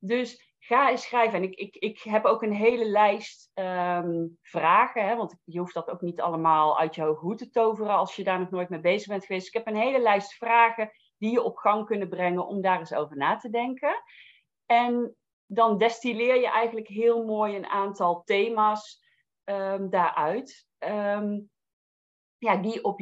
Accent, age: Dutch, 40-59